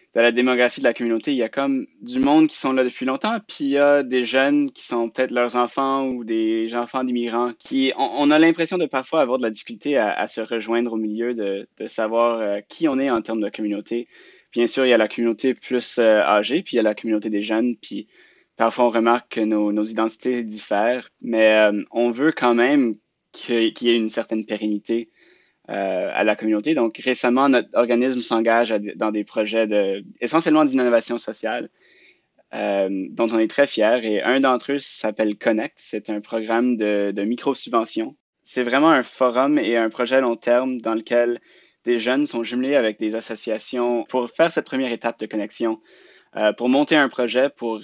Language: French